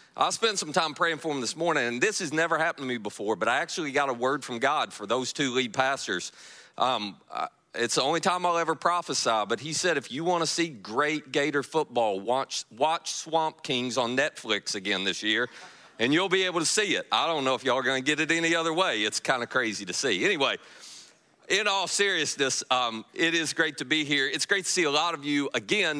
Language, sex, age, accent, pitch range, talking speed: English, male, 40-59, American, 125-160 Hz, 240 wpm